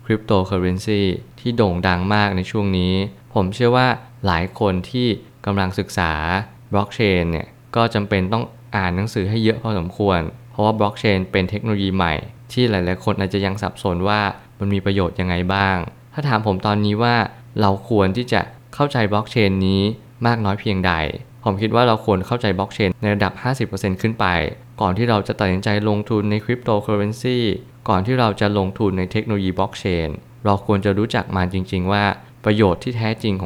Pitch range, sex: 95-115 Hz, male